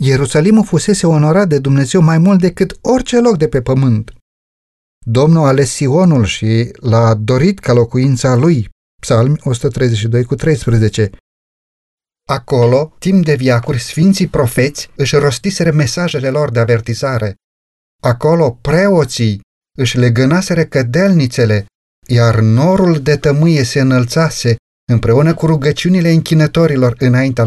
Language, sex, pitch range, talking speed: Romanian, male, 120-165 Hz, 115 wpm